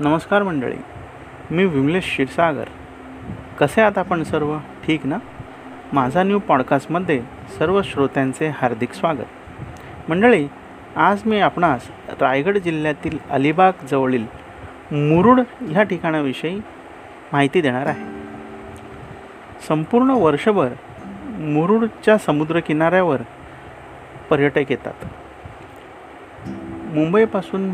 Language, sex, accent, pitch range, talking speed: Marathi, male, native, 135-180 Hz, 80 wpm